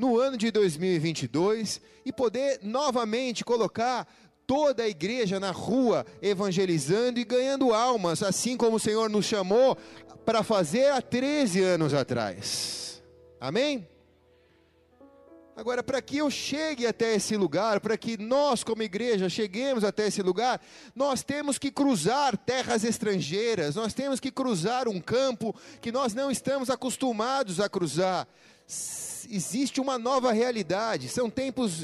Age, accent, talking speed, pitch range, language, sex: 30-49, Brazilian, 135 wpm, 185-255 Hz, Portuguese, male